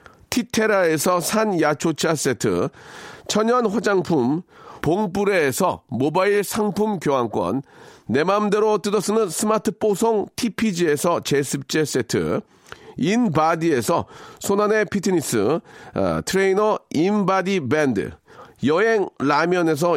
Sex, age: male, 40-59